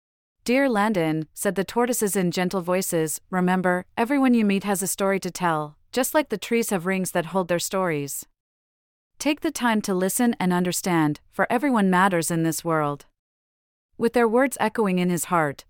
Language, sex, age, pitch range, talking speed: English, female, 40-59, 165-220 Hz, 180 wpm